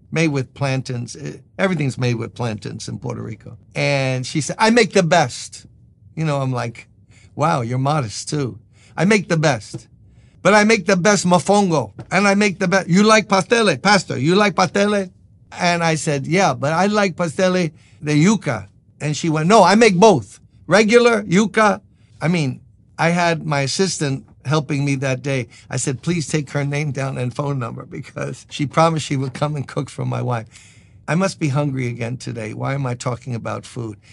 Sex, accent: male, American